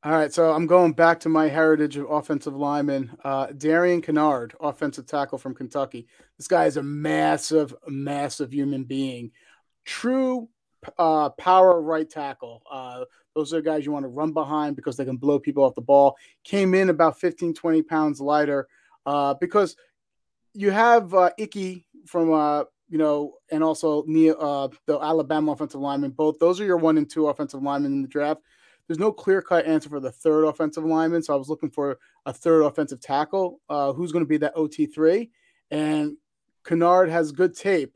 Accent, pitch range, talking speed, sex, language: American, 145-175 Hz, 185 wpm, male, English